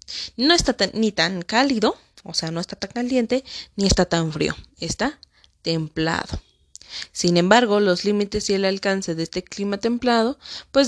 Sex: female